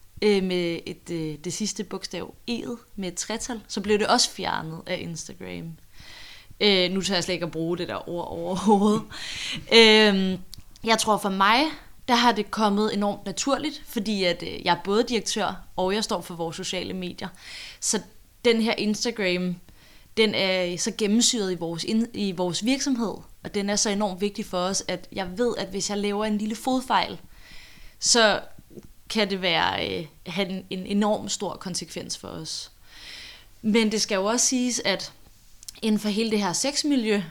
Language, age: Danish, 20-39